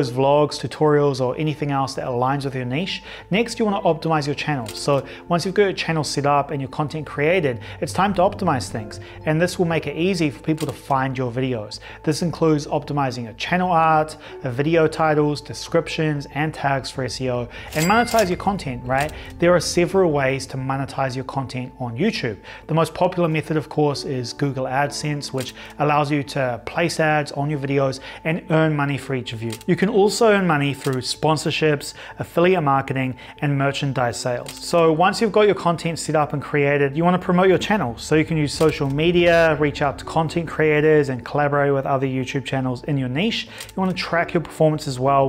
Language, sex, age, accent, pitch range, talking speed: English, male, 30-49, Australian, 135-165 Hz, 205 wpm